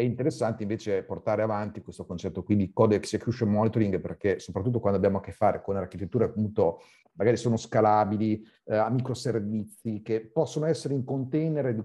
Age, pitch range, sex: 40-59, 95-120 Hz, male